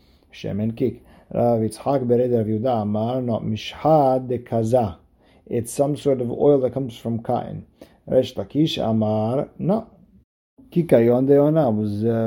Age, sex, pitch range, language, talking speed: 50-69, male, 110-130 Hz, English, 130 wpm